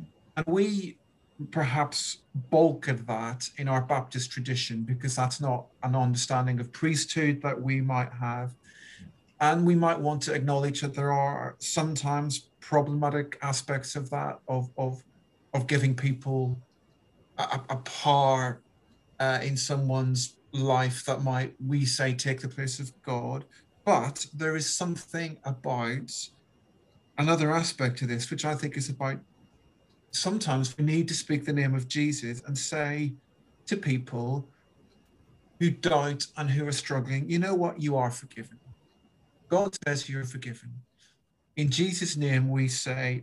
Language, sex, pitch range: English, male, 130-150 Hz